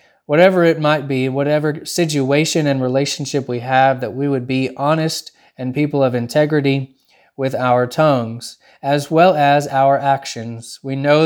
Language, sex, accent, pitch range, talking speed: English, male, American, 130-150 Hz, 155 wpm